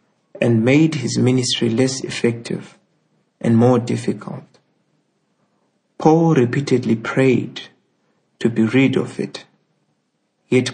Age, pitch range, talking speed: 60-79, 115-135 Hz, 100 wpm